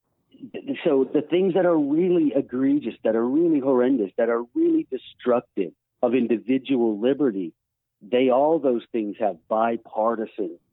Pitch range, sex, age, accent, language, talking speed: 120-185 Hz, male, 50-69, American, English, 135 wpm